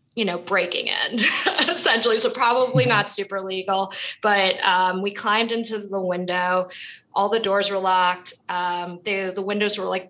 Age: 20-39